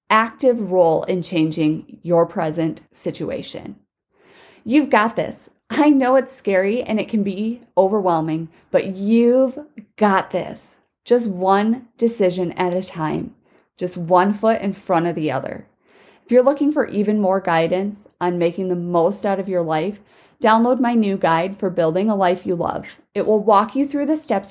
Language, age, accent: English, 30-49, American